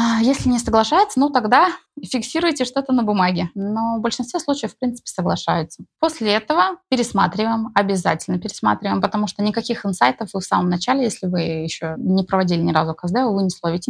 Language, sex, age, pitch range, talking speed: Russian, female, 20-39, 185-240 Hz, 175 wpm